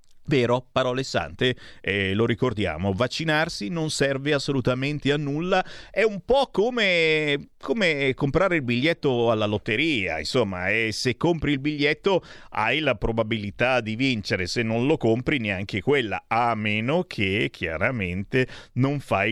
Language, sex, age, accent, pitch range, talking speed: Italian, male, 30-49, native, 105-140 Hz, 140 wpm